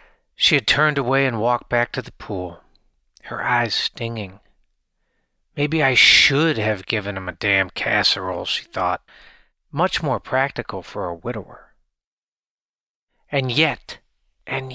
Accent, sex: American, male